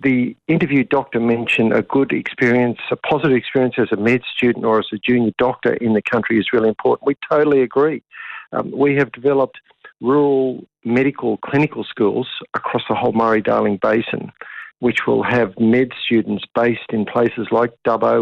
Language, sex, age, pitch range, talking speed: English, male, 50-69, 115-140 Hz, 170 wpm